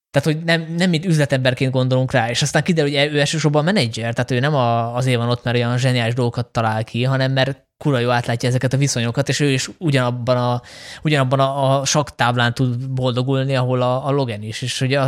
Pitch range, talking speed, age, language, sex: 125-150 Hz, 205 wpm, 20-39, Hungarian, male